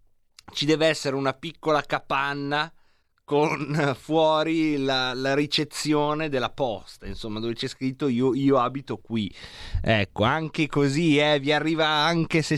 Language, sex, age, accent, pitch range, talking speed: Italian, male, 30-49, native, 125-160 Hz, 140 wpm